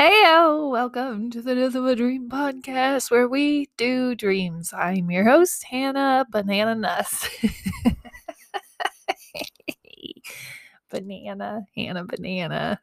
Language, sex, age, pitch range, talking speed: English, female, 20-39, 205-270 Hz, 105 wpm